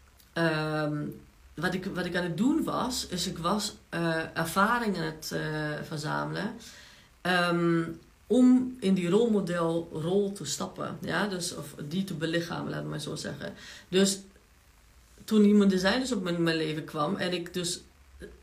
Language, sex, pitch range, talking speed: Dutch, female, 165-205 Hz, 160 wpm